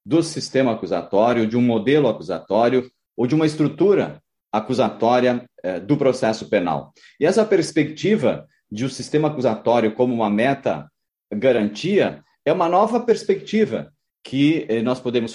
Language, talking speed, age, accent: Portuguese, 135 wpm, 40-59, Brazilian